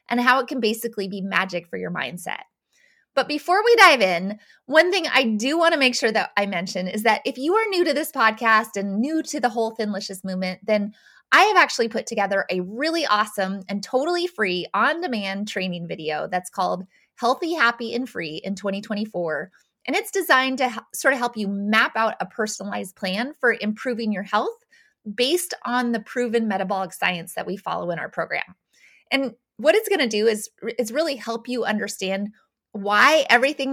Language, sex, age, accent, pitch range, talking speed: English, female, 20-39, American, 195-260 Hz, 190 wpm